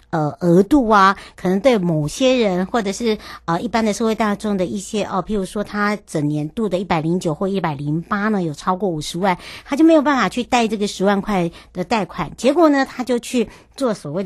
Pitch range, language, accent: 185-230 Hz, Chinese, American